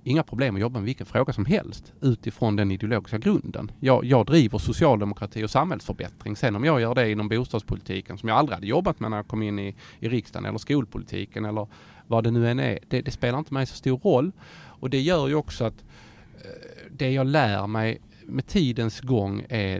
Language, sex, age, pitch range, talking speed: Swedish, male, 30-49, 105-130 Hz, 210 wpm